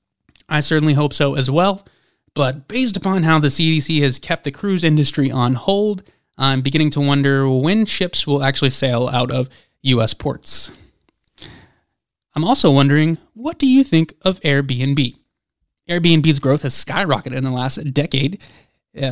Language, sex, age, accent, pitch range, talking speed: English, male, 20-39, American, 135-160 Hz, 155 wpm